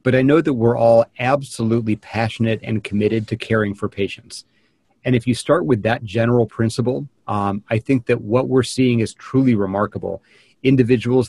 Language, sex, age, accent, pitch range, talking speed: English, male, 40-59, American, 110-125 Hz, 175 wpm